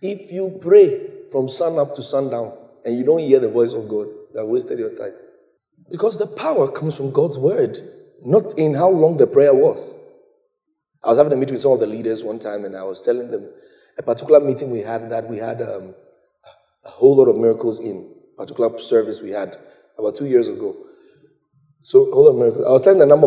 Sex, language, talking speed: male, English, 225 wpm